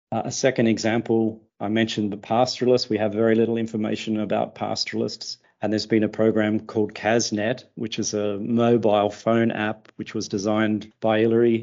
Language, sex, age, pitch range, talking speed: English, male, 40-59, 105-115 Hz, 170 wpm